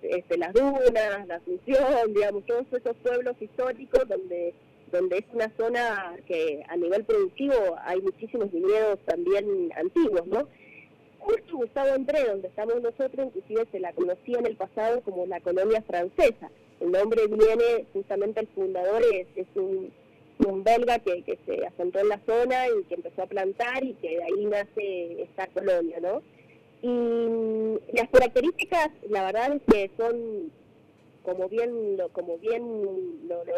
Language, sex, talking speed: Spanish, female, 155 wpm